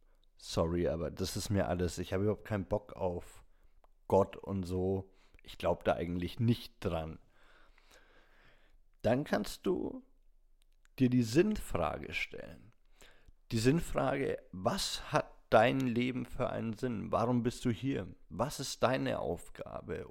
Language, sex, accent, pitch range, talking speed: German, male, German, 85-115 Hz, 135 wpm